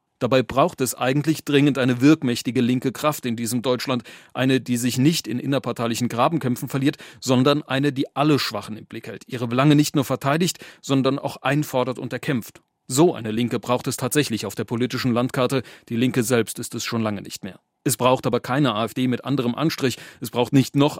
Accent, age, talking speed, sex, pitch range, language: German, 40-59, 195 wpm, male, 120-145 Hz, German